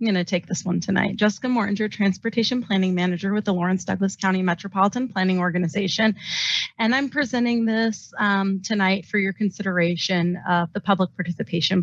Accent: American